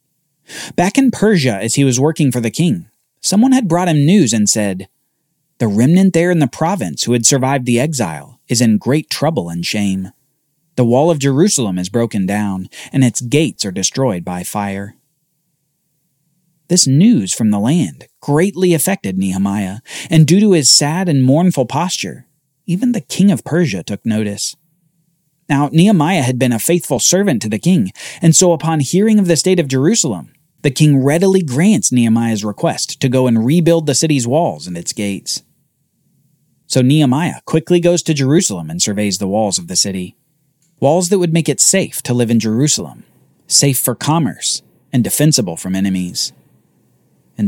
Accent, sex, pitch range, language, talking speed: American, male, 115-170 Hz, English, 175 wpm